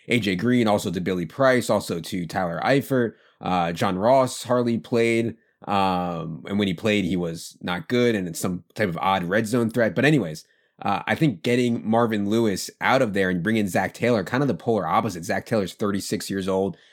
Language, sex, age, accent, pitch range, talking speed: English, male, 20-39, American, 95-115 Hz, 205 wpm